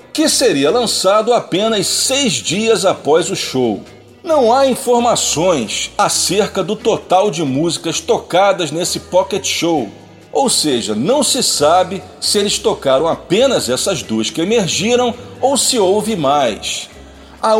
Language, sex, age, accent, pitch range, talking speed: Portuguese, male, 40-59, Brazilian, 185-245 Hz, 135 wpm